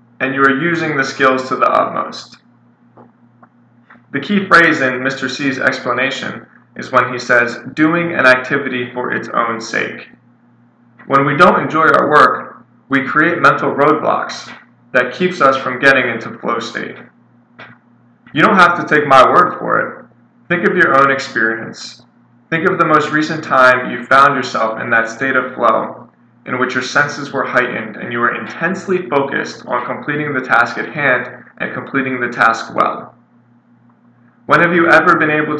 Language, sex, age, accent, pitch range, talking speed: English, male, 20-39, American, 120-140 Hz, 170 wpm